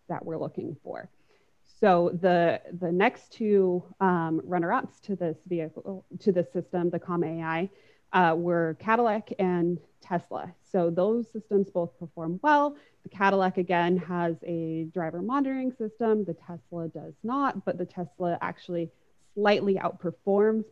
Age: 20-39